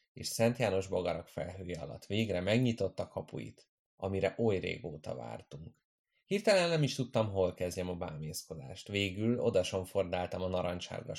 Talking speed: 140 wpm